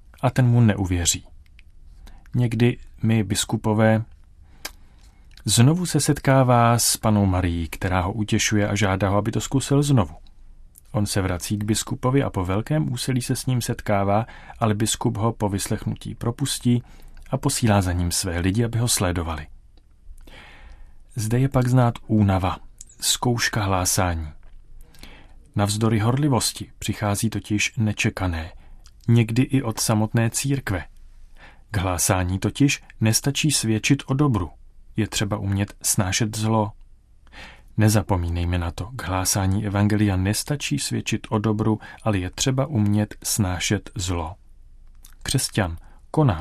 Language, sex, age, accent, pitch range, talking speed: Czech, male, 30-49, native, 95-120 Hz, 130 wpm